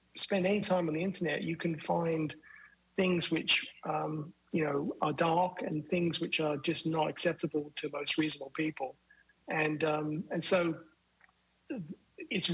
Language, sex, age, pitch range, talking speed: English, male, 40-59, 150-180 Hz, 155 wpm